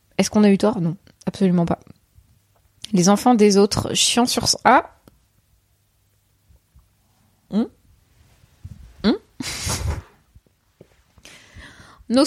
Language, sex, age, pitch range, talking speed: French, female, 20-39, 190-245 Hz, 95 wpm